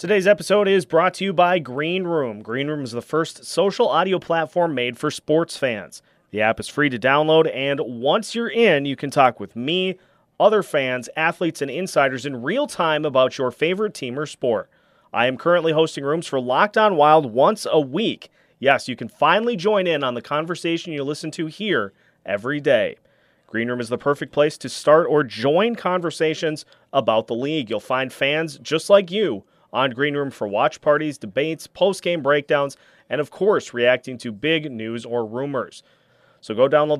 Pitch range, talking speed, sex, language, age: 135-175 Hz, 190 wpm, male, English, 30-49